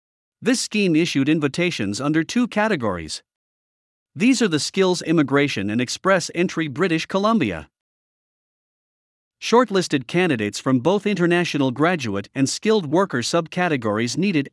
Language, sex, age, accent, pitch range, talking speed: English, male, 50-69, American, 130-185 Hz, 115 wpm